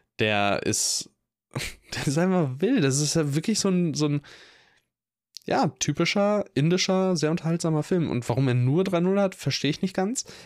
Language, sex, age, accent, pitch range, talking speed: German, male, 10-29, German, 120-150 Hz, 170 wpm